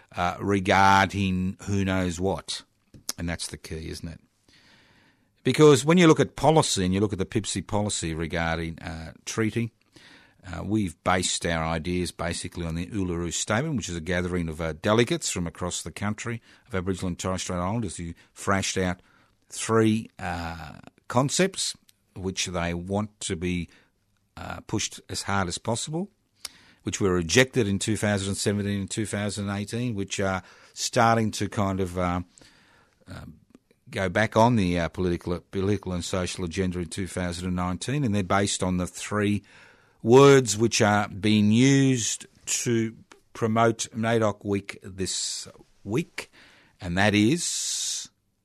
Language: English